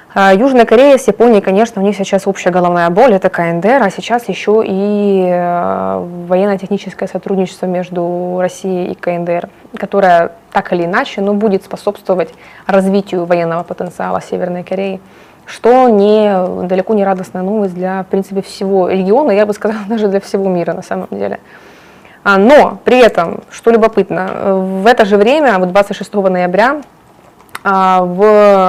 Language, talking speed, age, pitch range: Russian, 150 wpm, 20-39, 185-210 Hz